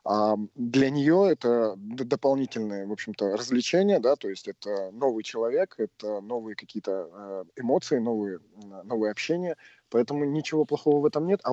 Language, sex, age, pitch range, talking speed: Russian, male, 20-39, 110-135 Hz, 130 wpm